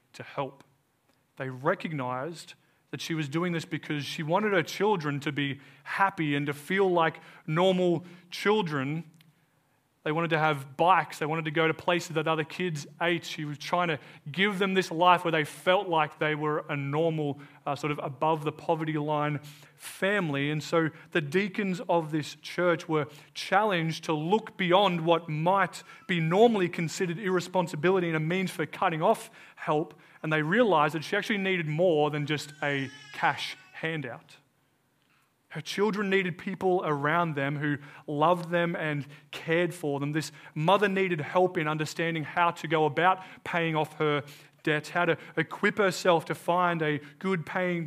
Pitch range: 145-175 Hz